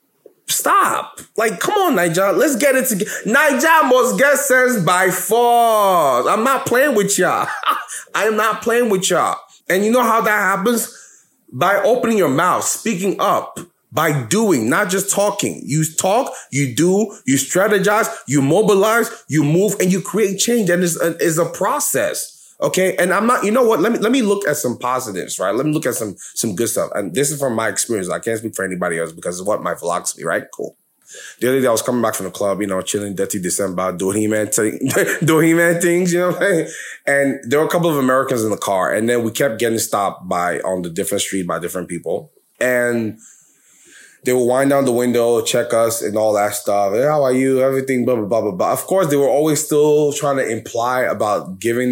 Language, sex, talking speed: English, male, 220 wpm